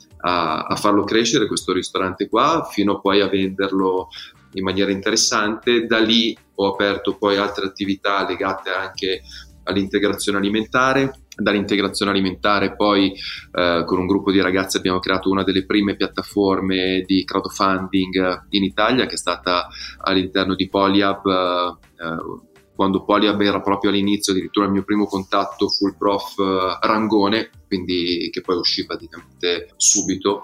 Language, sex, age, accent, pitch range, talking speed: Italian, male, 20-39, native, 95-105 Hz, 140 wpm